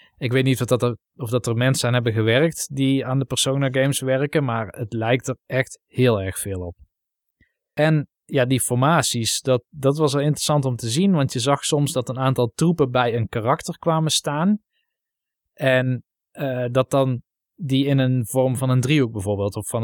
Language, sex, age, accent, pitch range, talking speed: Dutch, male, 20-39, Dutch, 115-135 Hz, 205 wpm